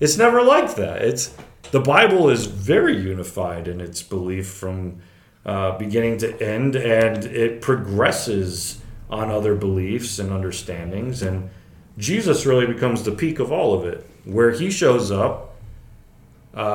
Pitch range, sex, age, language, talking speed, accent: 95-120 Hz, male, 30-49, English, 145 wpm, American